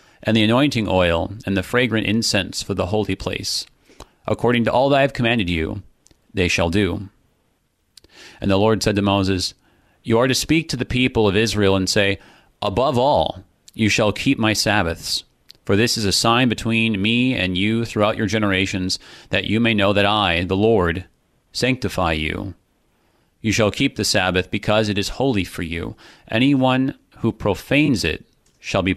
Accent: American